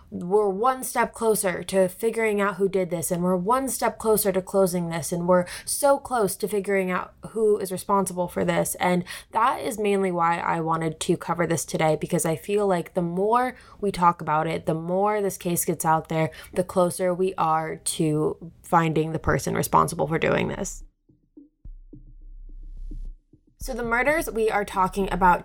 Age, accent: 20-39, American